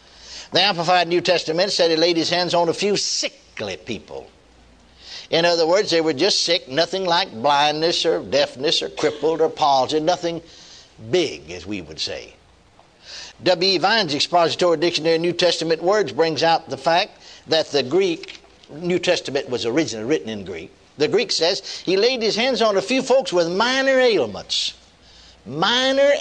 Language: English